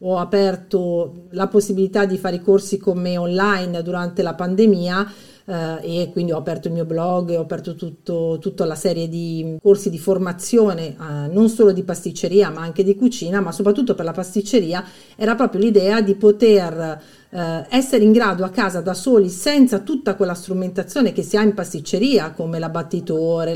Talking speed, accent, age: 180 wpm, native, 40-59